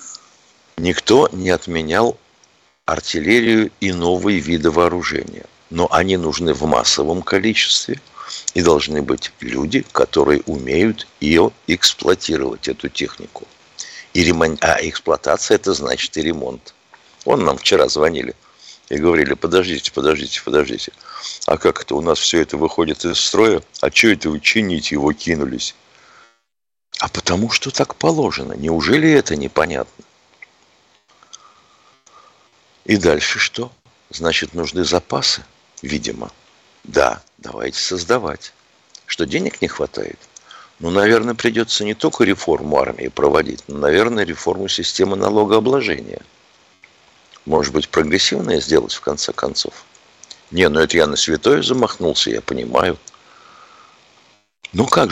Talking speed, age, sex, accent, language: 120 wpm, 60-79, male, native, Russian